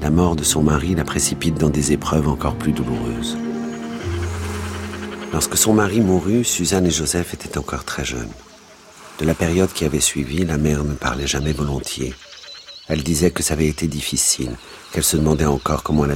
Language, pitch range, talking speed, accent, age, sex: French, 75-85 Hz, 180 wpm, French, 50-69, male